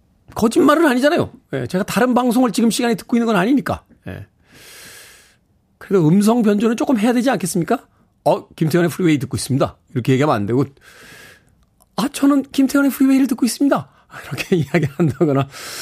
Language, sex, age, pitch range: Korean, male, 40-59, 135-220 Hz